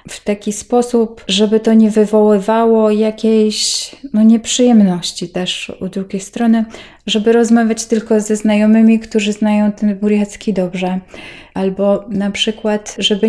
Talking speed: 120 wpm